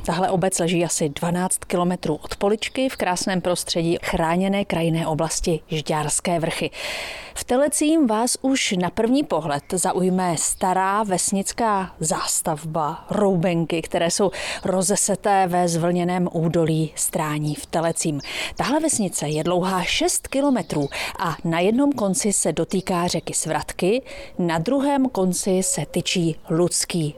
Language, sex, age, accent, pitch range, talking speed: Czech, female, 30-49, native, 170-220 Hz, 125 wpm